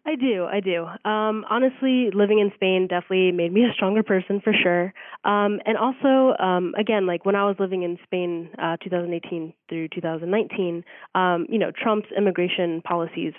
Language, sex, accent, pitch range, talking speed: English, female, American, 175-200 Hz, 175 wpm